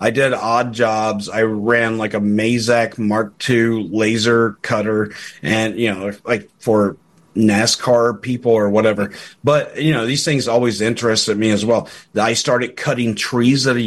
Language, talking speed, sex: English, 165 wpm, male